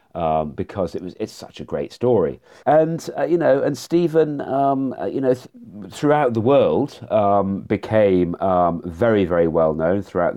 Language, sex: English, male